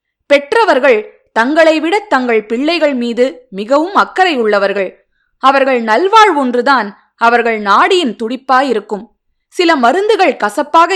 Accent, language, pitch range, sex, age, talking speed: native, Tamil, 220-325 Hz, female, 20-39, 90 wpm